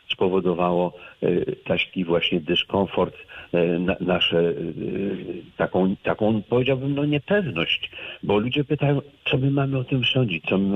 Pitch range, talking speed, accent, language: 85-115 Hz, 115 wpm, native, Polish